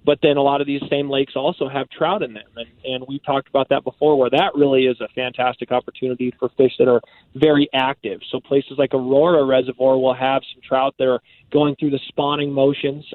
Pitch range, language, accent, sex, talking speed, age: 130-145 Hz, English, American, male, 225 wpm, 20-39